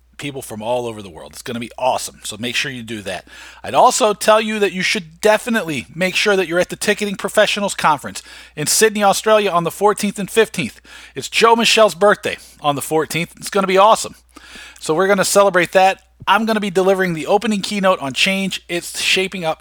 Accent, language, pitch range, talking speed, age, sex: American, English, 140-195 Hz, 225 wpm, 40-59, male